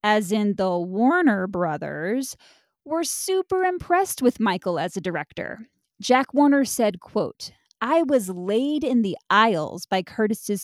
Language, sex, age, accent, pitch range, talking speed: English, female, 20-39, American, 195-265 Hz, 140 wpm